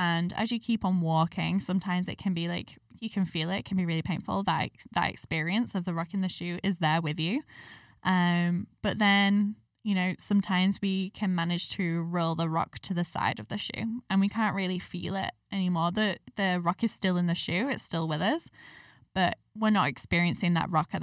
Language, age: English, 10-29